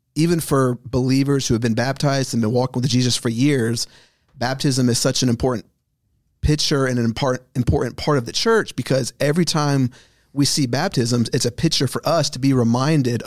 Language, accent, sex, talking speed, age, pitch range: English, American, male, 185 wpm, 40-59, 115-135 Hz